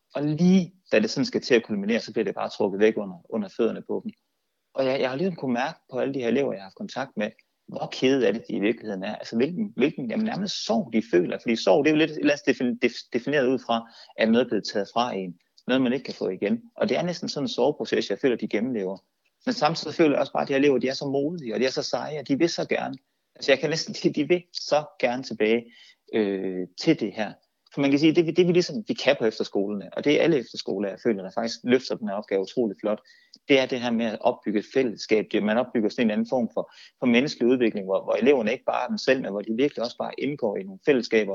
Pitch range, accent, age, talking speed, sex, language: 110-165 Hz, native, 30-49, 280 wpm, male, Danish